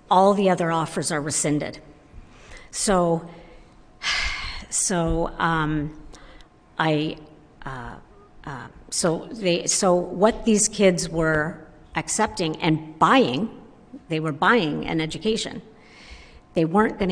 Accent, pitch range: American, 160-205 Hz